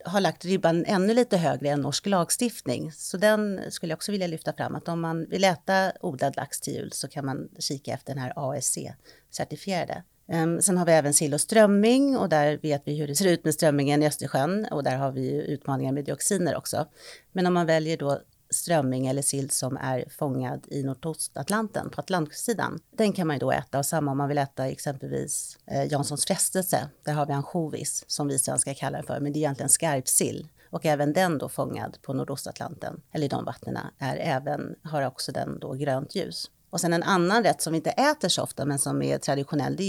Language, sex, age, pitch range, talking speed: Swedish, female, 40-59, 140-175 Hz, 210 wpm